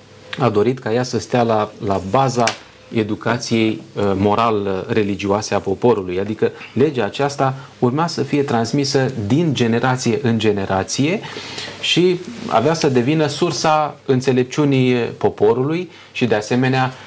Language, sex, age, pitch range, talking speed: Romanian, male, 30-49, 105-130 Hz, 125 wpm